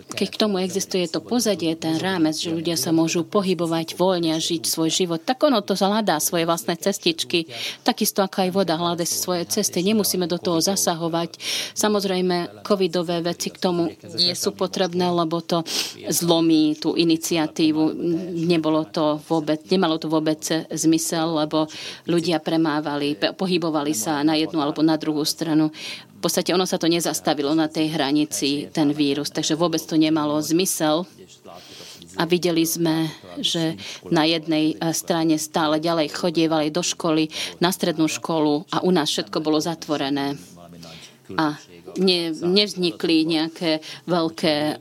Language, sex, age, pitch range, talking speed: Slovak, female, 30-49, 155-180 Hz, 145 wpm